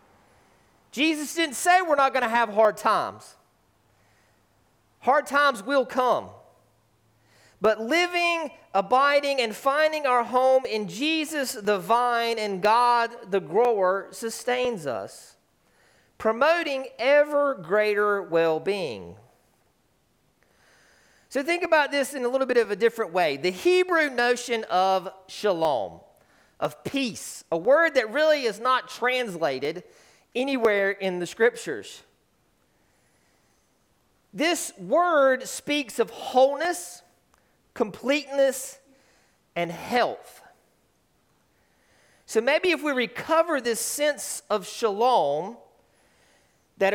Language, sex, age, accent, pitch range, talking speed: English, male, 40-59, American, 215-285 Hz, 105 wpm